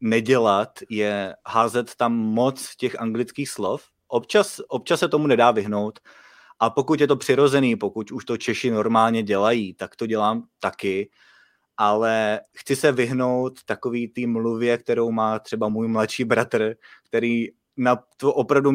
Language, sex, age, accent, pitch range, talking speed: Czech, male, 20-39, native, 105-125 Hz, 145 wpm